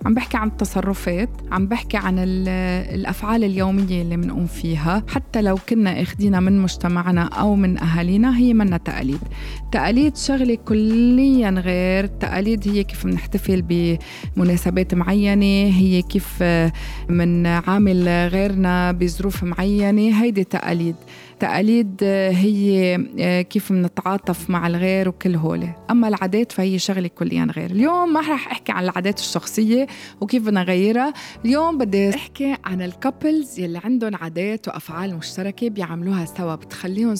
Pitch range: 175-220 Hz